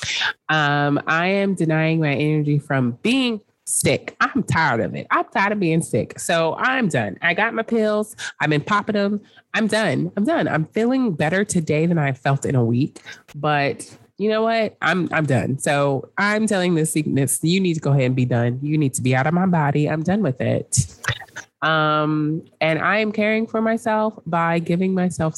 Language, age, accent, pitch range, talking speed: English, 20-39, American, 135-175 Hz, 200 wpm